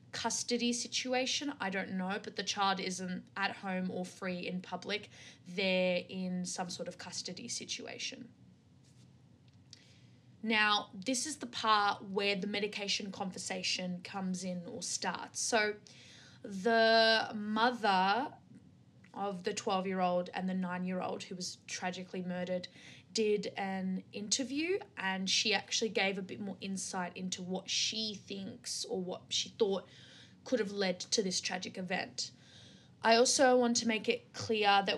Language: English